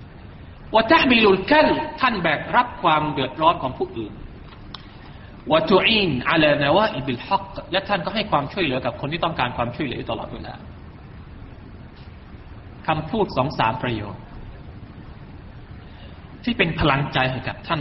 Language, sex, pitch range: Thai, male, 125-185 Hz